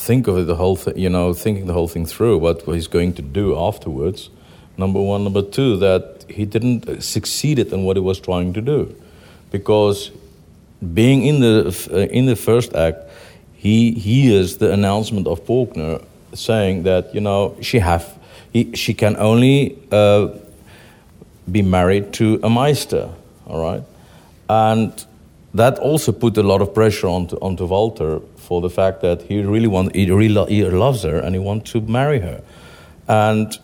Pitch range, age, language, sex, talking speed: 95-115 Hz, 50-69, English, male, 175 wpm